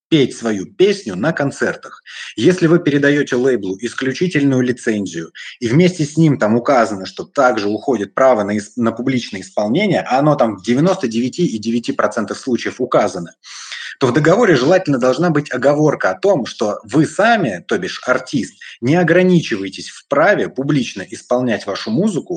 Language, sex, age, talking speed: Russian, male, 30-49, 145 wpm